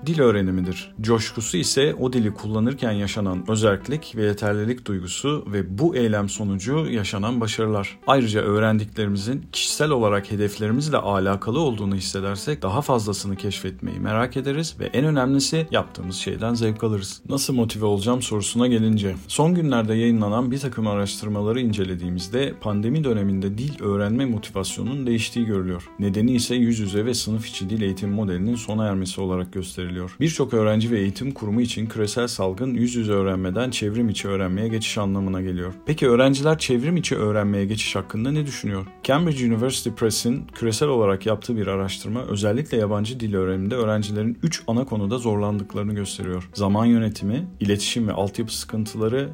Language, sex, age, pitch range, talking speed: Turkish, male, 40-59, 100-120 Hz, 145 wpm